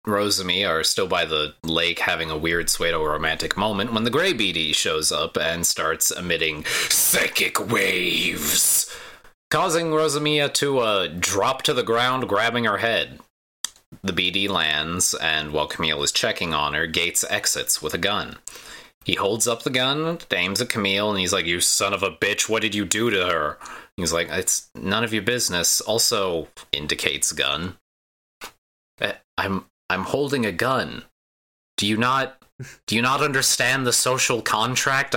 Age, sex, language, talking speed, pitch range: 30-49, male, English, 160 wpm, 85-125 Hz